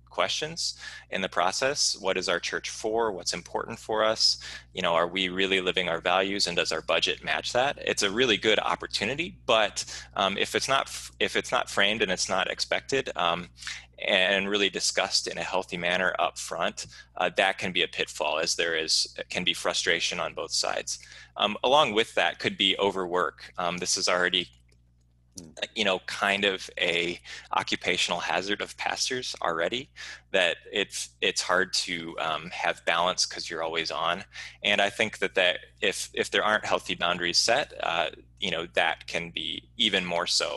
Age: 20-39